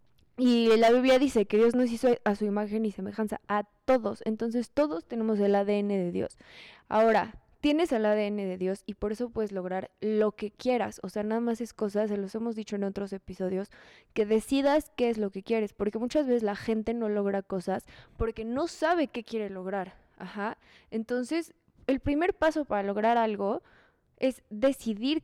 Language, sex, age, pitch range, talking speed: Spanish, female, 20-39, 205-255 Hz, 190 wpm